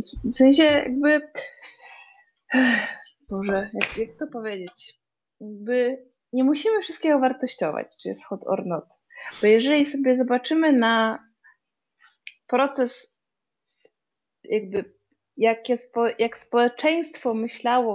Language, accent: Polish, native